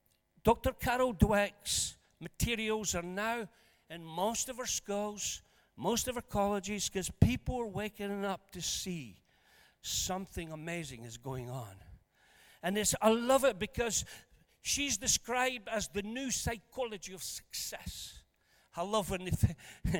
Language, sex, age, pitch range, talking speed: English, male, 60-79, 150-210 Hz, 140 wpm